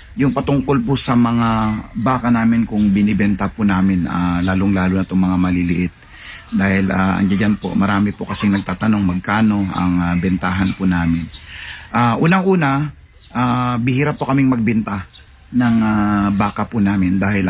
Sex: male